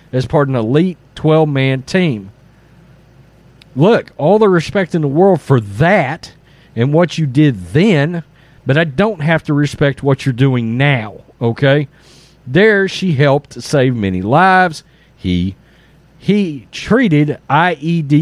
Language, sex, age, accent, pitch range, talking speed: English, male, 40-59, American, 135-170 Hz, 140 wpm